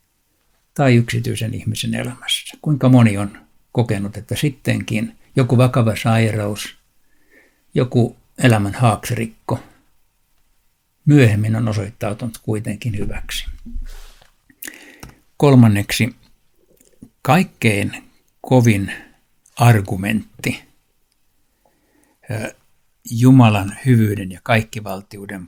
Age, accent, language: 60-79, native, Finnish